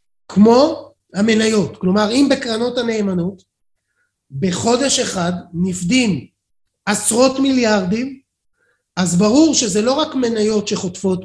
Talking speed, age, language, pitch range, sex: 95 wpm, 30-49, Hebrew, 195-265 Hz, male